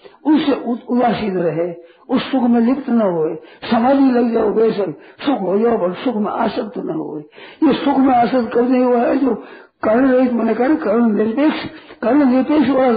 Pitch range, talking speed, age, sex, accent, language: 215-260 Hz, 160 wpm, 50-69, male, native, Hindi